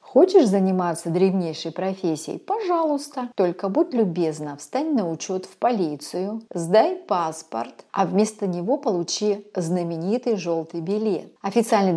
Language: Russian